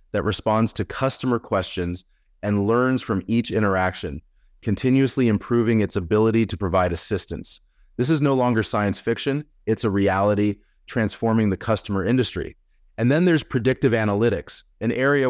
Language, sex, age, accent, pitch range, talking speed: English, male, 30-49, American, 90-120 Hz, 145 wpm